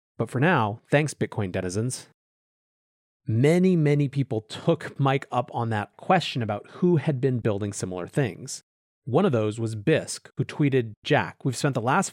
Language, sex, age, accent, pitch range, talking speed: English, male, 30-49, American, 110-155 Hz, 170 wpm